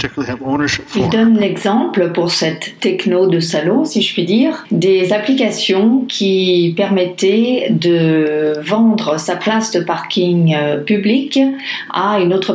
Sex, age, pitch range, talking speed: female, 40-59, 165-200 Hz, 125 wpm